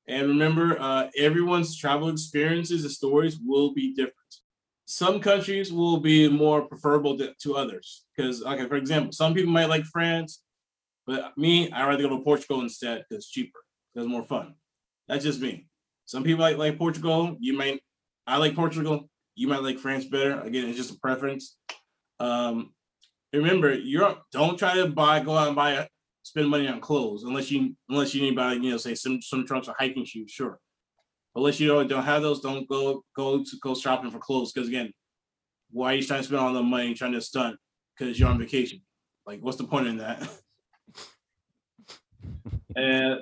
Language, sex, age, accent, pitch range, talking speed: English, male, 20-39, American, 130-155 Hz, 190 wpm